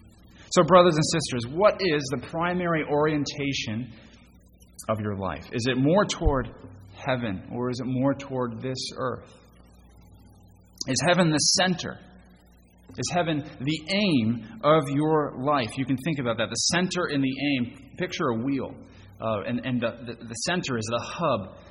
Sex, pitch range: male, 105-150 Hz